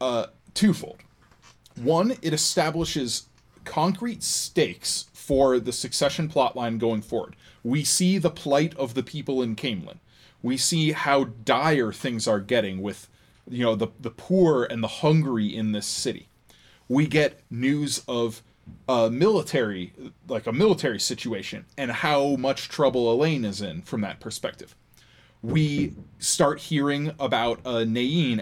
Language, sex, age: English, male, 20-39